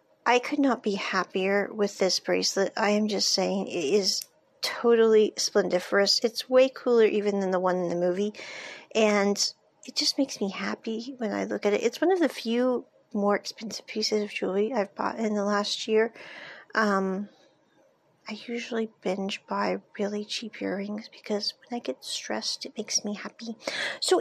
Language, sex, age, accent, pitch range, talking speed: English, female, 40-59, American, 205-260 Hz, 175 wpm